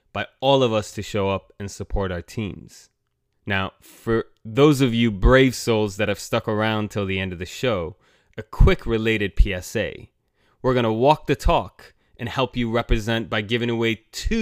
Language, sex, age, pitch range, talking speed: English, male, 20-39, 100-130 Hz, 190 wpm